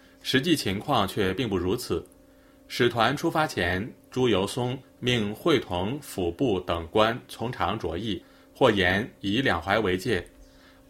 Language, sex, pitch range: Chinese, male, 95-140 Hz